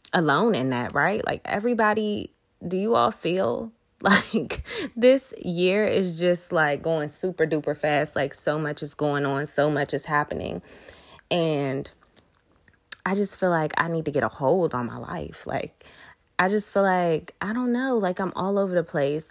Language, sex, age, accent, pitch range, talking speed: English, female, 20-39, American, 150-205 Hz, 180 wpm